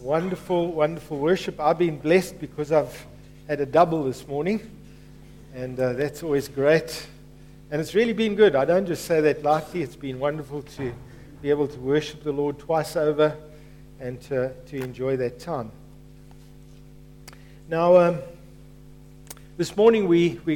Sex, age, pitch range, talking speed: male, 50-69, 150-205 Hz, 150 wpm